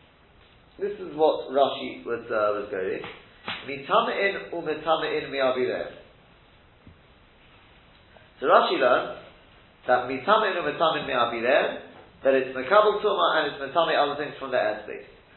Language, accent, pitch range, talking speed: English, British, 135-185 Hz, 130 wpm